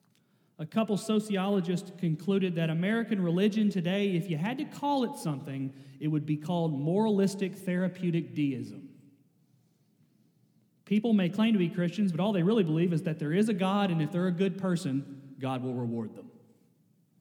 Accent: American